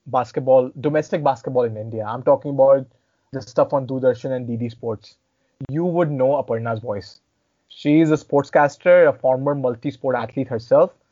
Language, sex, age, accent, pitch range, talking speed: English, male, 20-39, Indian, 130-155 Hz, 155 wpm